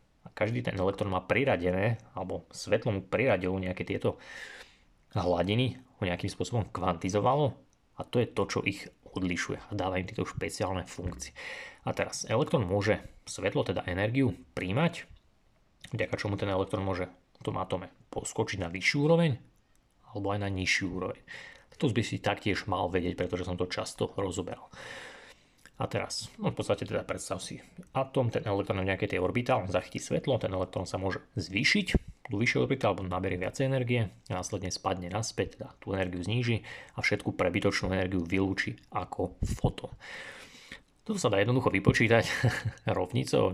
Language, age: Slovak, 30-49